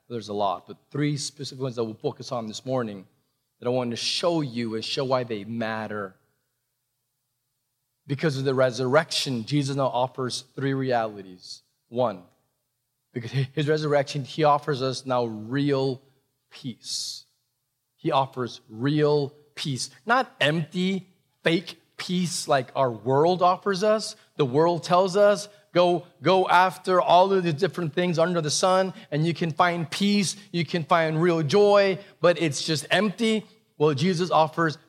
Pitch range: 125-170 Hz